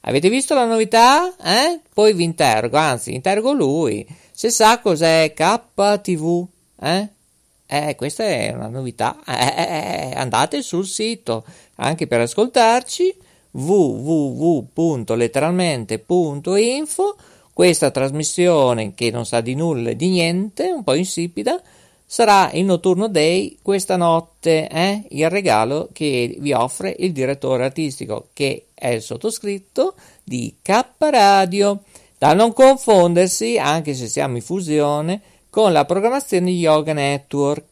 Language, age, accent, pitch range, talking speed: Italian, 50-69, native, 145-210 Hz, 125 wpm